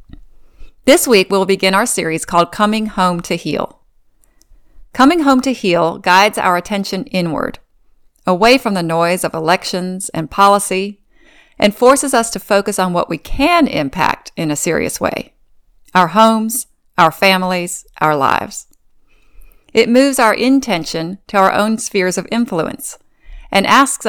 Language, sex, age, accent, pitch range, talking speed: English, female, 40-59, American, 180-235 Hz, 145 wpm